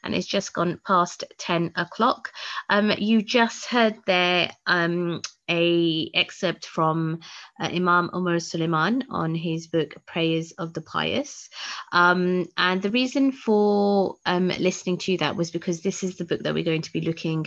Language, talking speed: English, 160 wpm